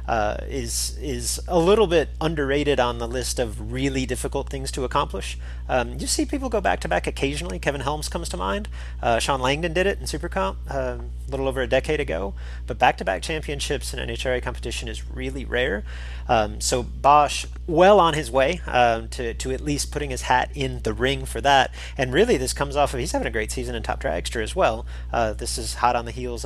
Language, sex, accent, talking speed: English, male, American, 220 wpm